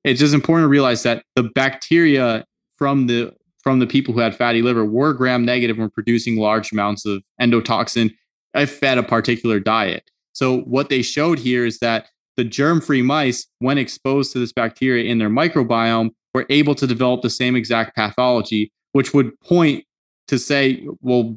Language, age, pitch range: English, 20-39, 120-140 Hz